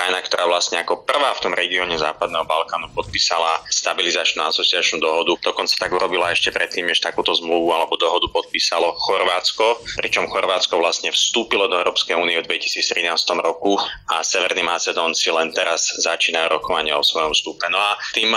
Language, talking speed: Slovak, 160 wpm